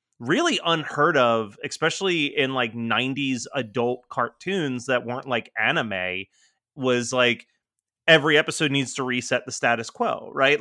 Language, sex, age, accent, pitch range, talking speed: English, male, 30-49, American, 120-150 Hz, 135 wpm